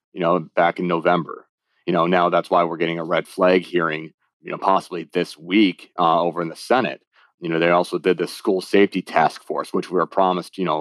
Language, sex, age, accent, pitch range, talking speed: English, male, 30-49, American, 90-105 Hz, 235 wpm